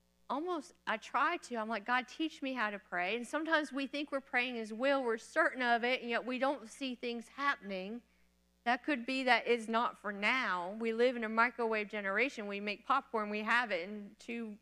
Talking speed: 220 wpm